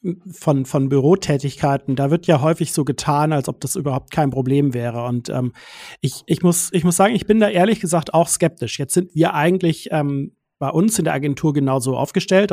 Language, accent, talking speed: German, German, 205 wpm